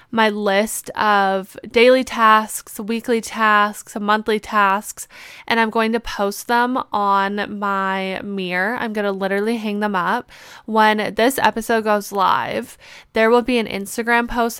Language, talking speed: English, 150 wpm